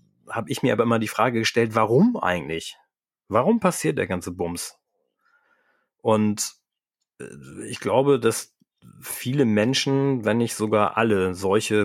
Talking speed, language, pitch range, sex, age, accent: 130 wpm, German, 100-125 Hz, male, 30-49, German